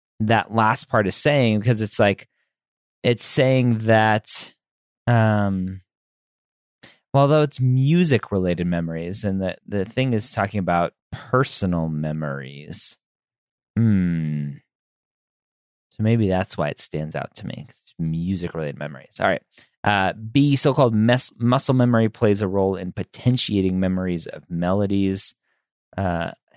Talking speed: 135 wpm